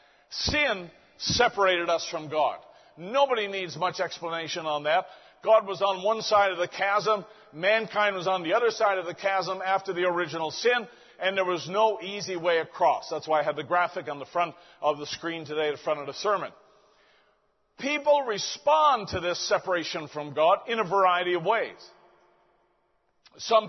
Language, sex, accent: English, male, American